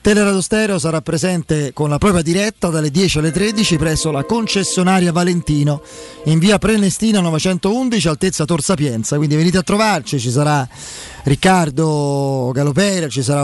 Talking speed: 140 wpm